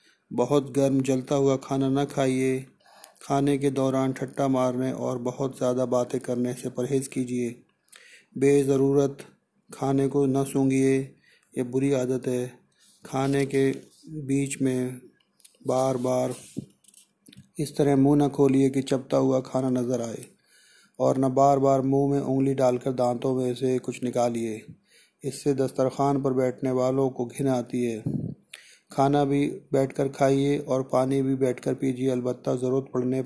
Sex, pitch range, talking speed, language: male, 130-140 Hz, 145 wpm, Hindi